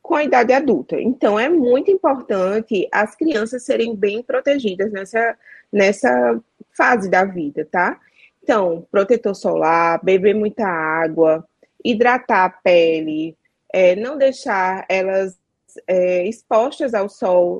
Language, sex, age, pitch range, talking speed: Portuguese, female, 20-39, 180-235 Hz, 115 wpm